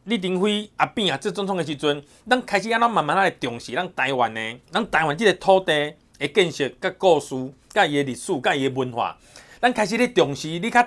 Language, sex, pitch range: Chinese, male, 135-200 Hz